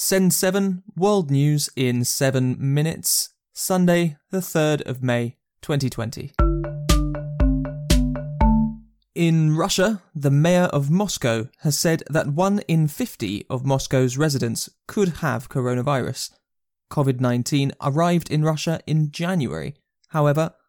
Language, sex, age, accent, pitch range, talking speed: English, male, 20-39, British, 130-170 Hz, 110 wpm